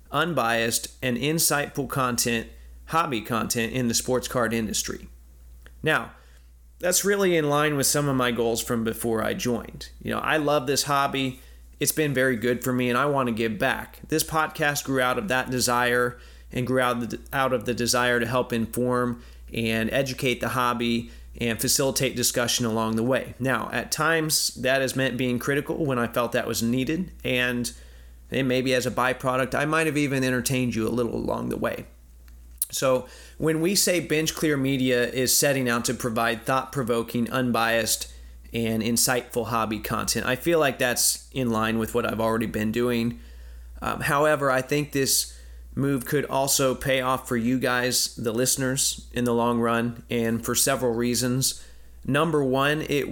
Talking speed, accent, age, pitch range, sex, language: 175 wpm, American, 30-49, 115-135 Hz, male, English